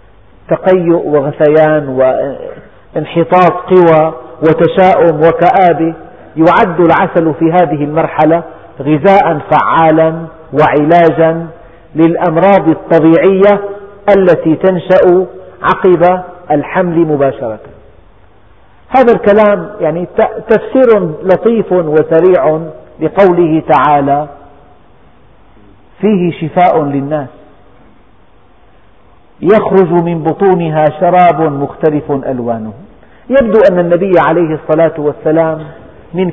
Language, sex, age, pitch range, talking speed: Arabic, male, 50-69, 150-185 Hz, 75 wpm